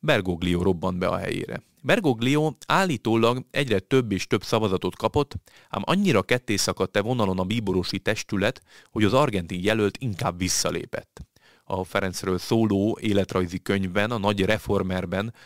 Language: Hungarian